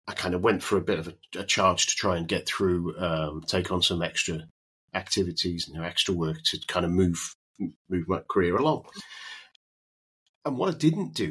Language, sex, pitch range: English, male, 80-95 Hz